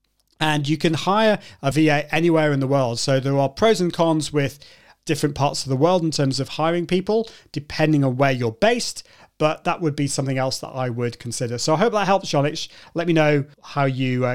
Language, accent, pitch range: English, British, 135-175 Hz